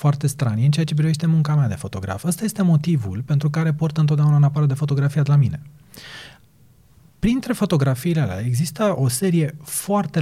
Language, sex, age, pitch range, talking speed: Romanian, male, 30-49, 125-175 Hz, 175 wpm